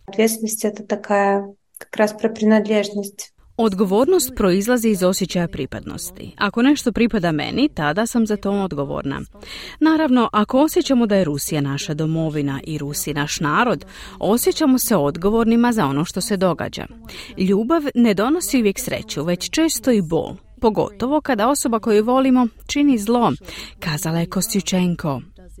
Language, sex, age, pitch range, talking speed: Croatian, female, 40-59, 170-240 Hz, 125 wpm